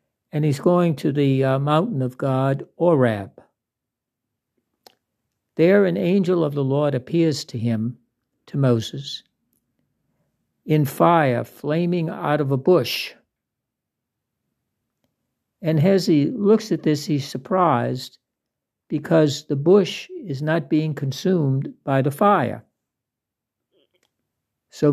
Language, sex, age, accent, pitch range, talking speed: English, male, 60-79, American, 125-170 Hz, 115 wpm